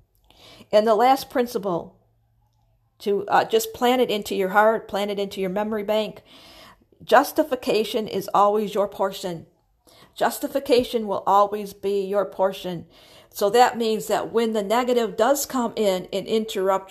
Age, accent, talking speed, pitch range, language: 50-69, American, 145 wpm, 185-225 Hz, English